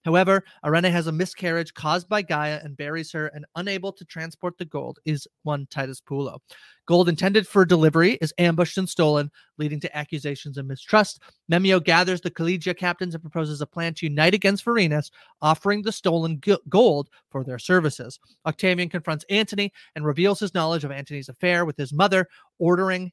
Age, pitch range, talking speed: 30-49, 150-185 Hz, 175 wpm